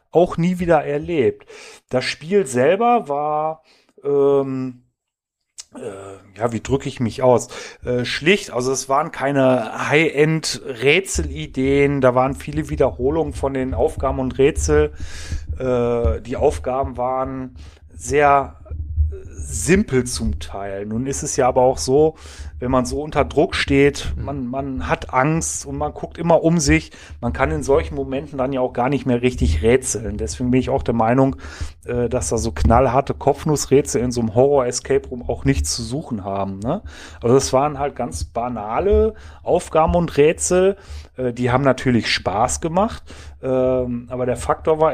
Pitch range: 115-145 Hz